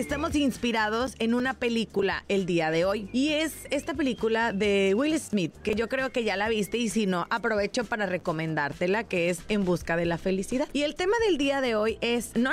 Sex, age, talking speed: female, 30-49, 215 wpm